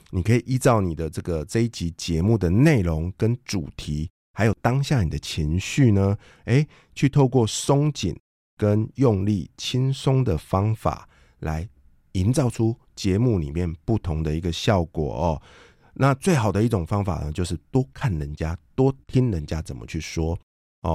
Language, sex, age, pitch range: Chinese, male, 50-69, 85-120 Hz